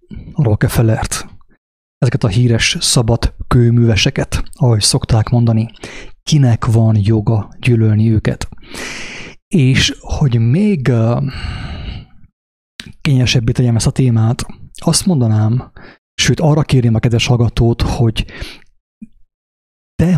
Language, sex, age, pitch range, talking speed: English, male, 30-49, 110-130 Hz, 95 wpm